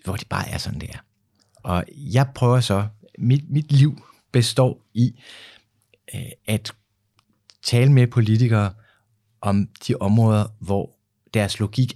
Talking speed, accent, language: 135 wpm, native, Danish